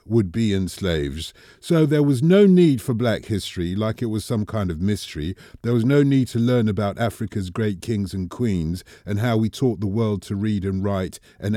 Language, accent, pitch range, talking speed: English, British, 95-125 Hz, 220 wpm